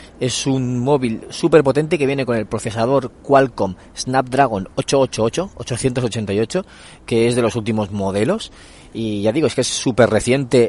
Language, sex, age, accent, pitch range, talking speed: Spanish, male, 30-49, Spanish, 110-135 Hz, 155 wpm